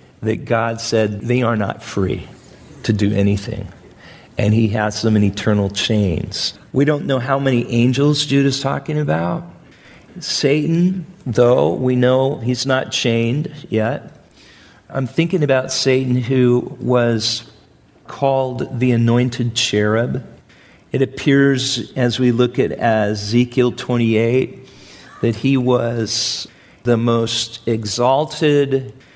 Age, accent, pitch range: 50-69, American, 110-130 Hz